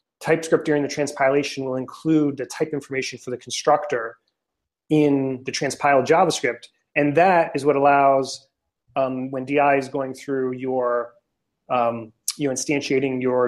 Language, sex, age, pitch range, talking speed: English, male, 30-49, 130-150 Hz, 140 wpm